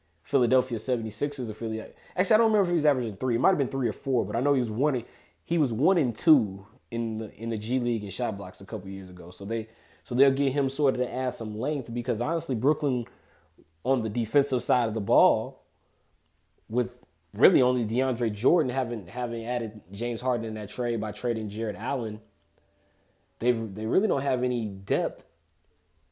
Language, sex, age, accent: English, male, 20-39, American